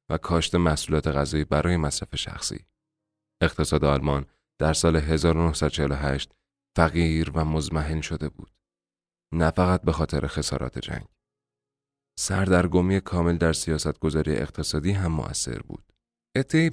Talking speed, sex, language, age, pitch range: 120 wpm, male, Persian, 30-49, 80-95 Hz